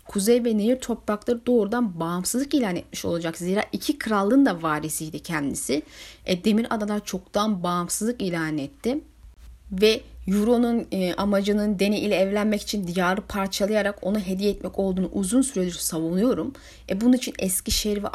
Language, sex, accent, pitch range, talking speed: Turkish, female, native, 185-245 Hz, 145 wpm